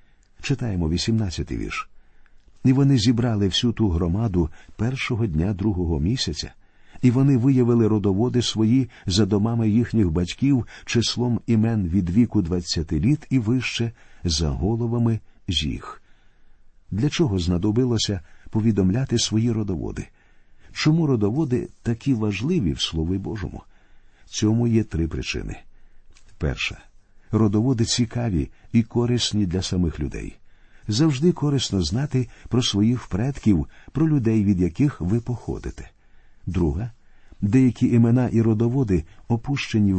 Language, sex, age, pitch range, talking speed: Ukrainian, male, 50-69, 95-125 Hz, 115 wpm